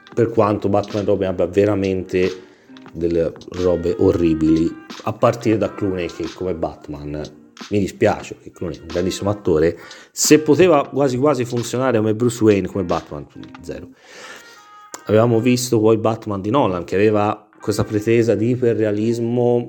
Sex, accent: male, native